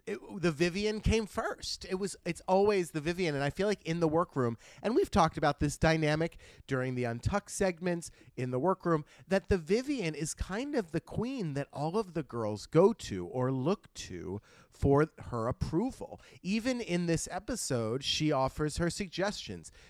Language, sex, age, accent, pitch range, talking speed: English, male, 30-49, American, 130-185 Hz, 180 wpm